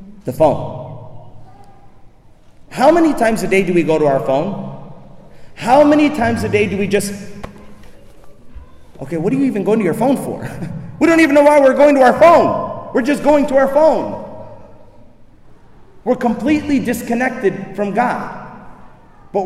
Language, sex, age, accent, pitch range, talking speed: English, male, 40-59, American, 190-270 Hz, 165 wpm